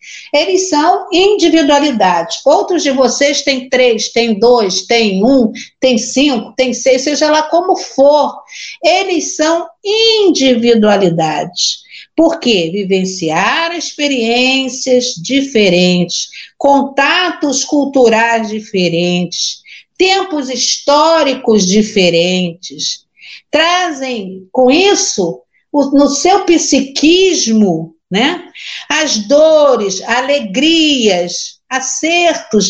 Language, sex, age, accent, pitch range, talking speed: Portuguese, female, 50-69, Brazilian, 230-315 Hz, 85 wpm